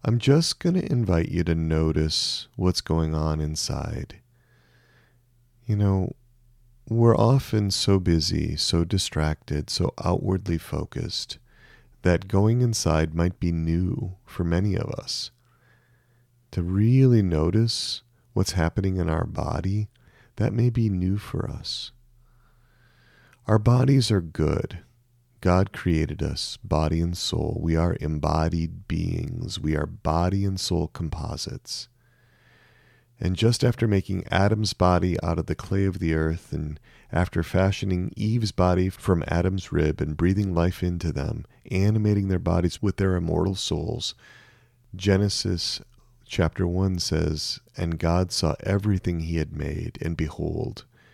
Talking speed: 135 wpm